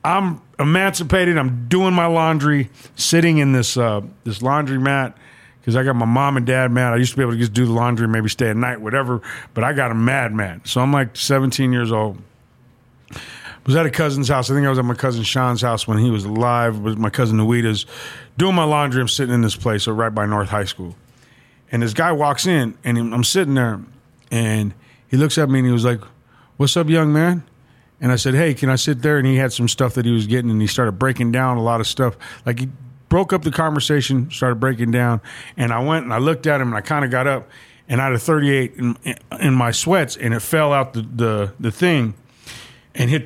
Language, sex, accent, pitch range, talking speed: English, male, American, 115-140 Hz, 240 wpm